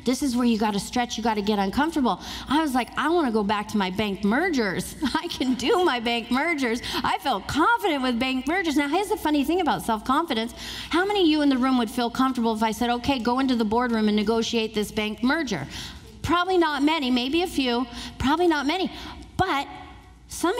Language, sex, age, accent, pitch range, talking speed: English, female, 40-59, American, 215-290 Hz, 225 wpm